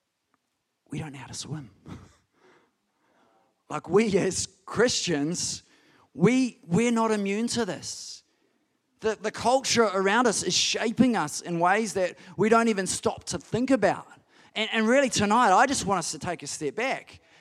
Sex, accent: male, Australian